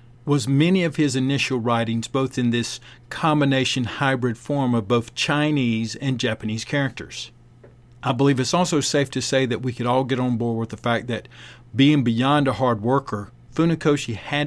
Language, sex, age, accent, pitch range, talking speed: English, male, 50-69, American, 120-140 Hz, 180 wpm